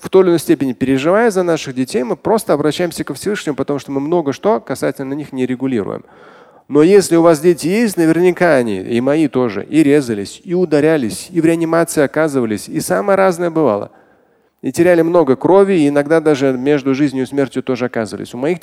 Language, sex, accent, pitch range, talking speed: Russian, male, native, 125-175 Hz, 195 wpm